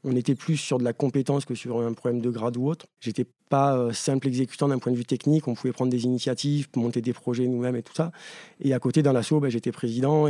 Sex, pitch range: male, 120-145 Hz